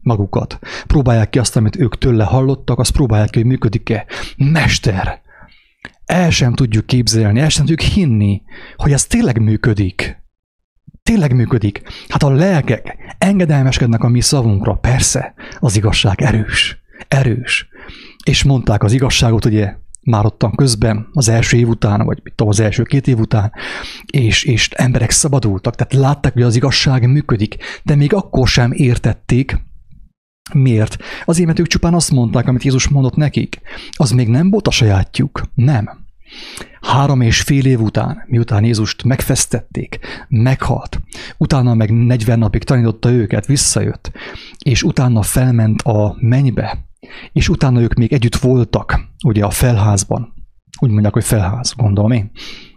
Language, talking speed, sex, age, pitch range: English, 145 wpm, male, 30-49, 110-135 Hz